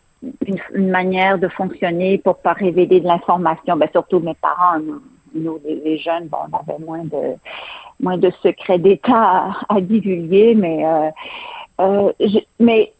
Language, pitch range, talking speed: French, 165-215 Hz, 165 wpm